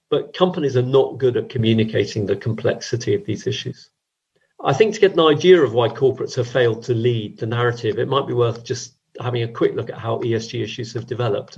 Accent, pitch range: British, 115-135 Hz